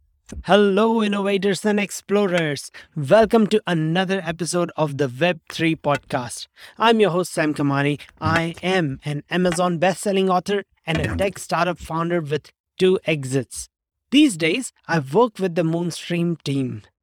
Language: English